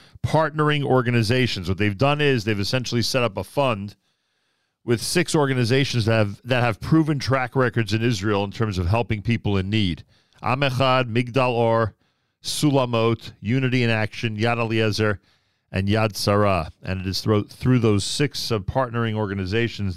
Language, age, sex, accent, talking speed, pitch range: English, 40-59, male, American, 155 wpm, 105-125 Hz